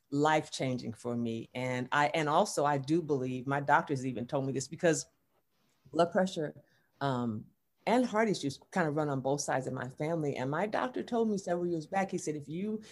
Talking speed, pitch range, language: 205 wpm, 135-175 Hz, English